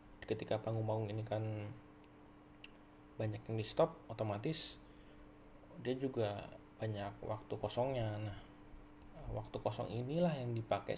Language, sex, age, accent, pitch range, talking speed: Indonesian, male, 20-39, native, 100-120 Hz, 115 wpm